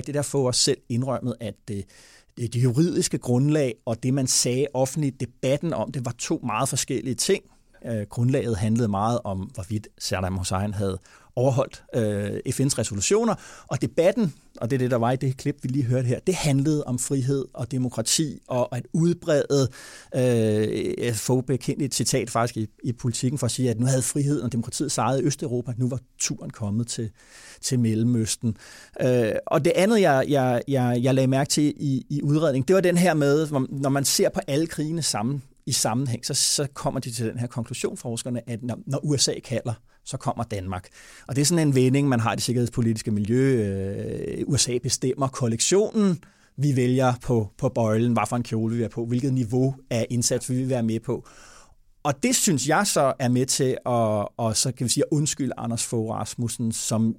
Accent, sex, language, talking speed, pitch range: Danish, male, English, 200 wpm, 115-140 Hz